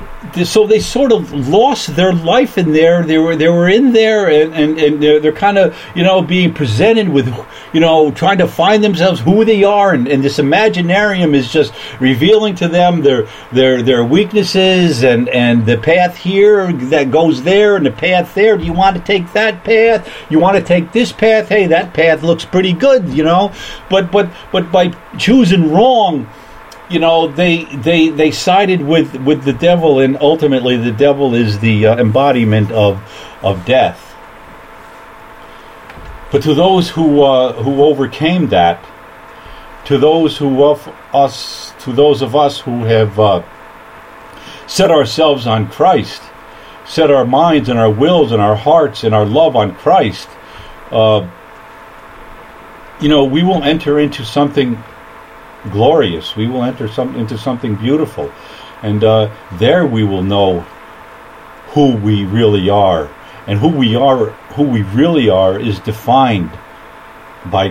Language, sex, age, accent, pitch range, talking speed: English, male, 50-69, American, 120-180 Hz, 160 wpm